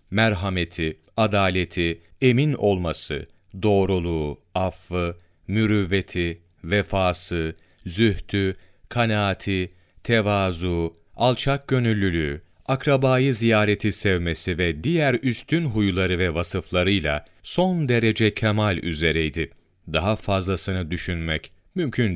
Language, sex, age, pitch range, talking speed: Turkish, male, 40-59, 85-110 Hz, 80 wpm